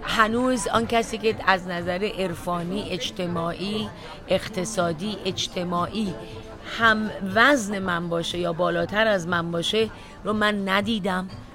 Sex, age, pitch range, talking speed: female, 40-59, 170-220 Hz, 115 wpm